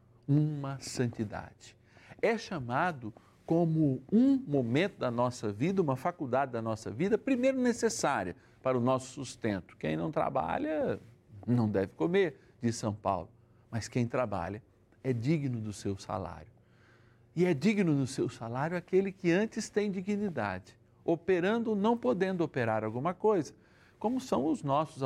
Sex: male